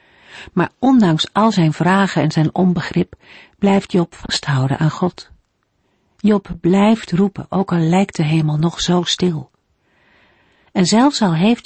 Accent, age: Dutch, 50-69